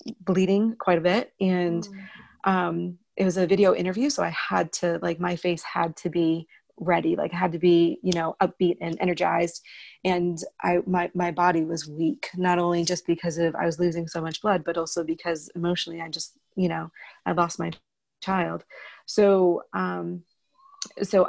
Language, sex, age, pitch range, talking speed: English, female, 30-49, 170-190 Hz, 180 wpm